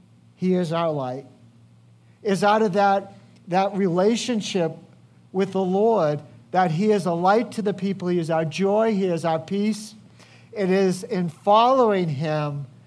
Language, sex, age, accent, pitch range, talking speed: English, male, 50-69, American, 125-175 Hz, 160 wpm